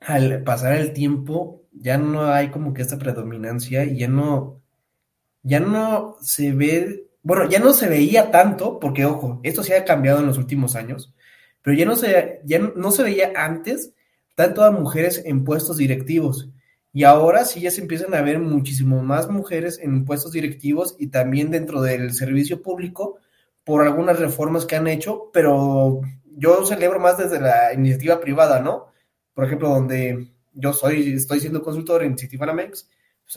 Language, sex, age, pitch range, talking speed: Spanish, male, 20-39, 140-175 Hz, 175 wpm